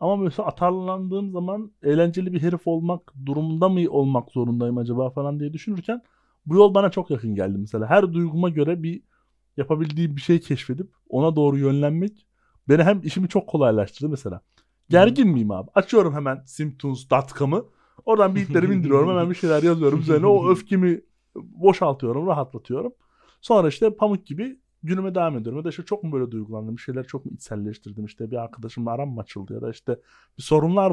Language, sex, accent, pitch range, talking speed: Turkish, male, native, 120-175 Hz, 170 wpm